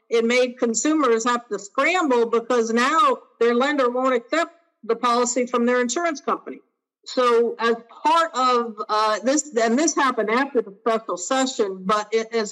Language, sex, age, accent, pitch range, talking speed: English, female, 50-69, American, 215-255 Hz, 160 wpm